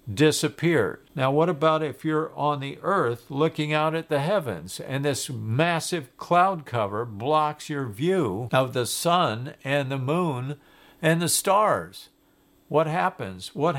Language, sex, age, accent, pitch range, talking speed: English, male, 60-79, American, 125-160 Hz, 150 wpm